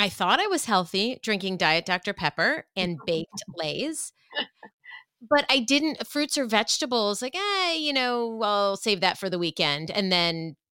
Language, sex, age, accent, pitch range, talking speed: English, female, 30-49, American, 170-245 Hz, 170 wpm